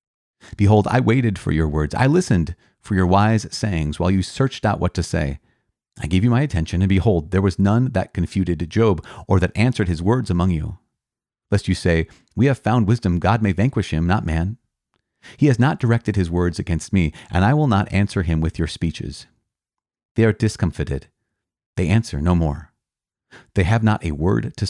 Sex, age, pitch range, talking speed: male, 40-59, 80-105 Hz, 200 wpm